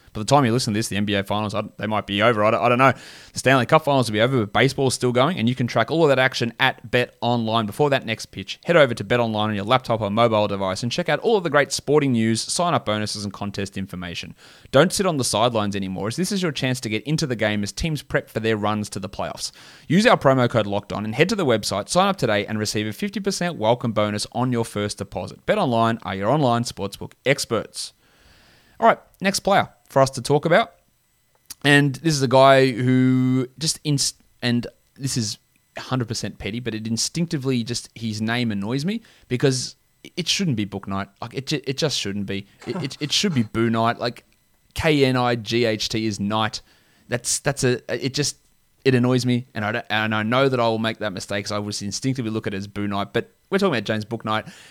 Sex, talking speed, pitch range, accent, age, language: male, 240 wpm, 105-135 Hz, Australian, 20-39, English